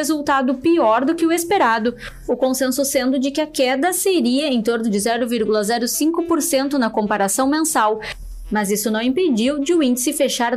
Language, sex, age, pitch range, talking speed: Portuguese, female, 20-39, 225-295 Hz, 165 wpm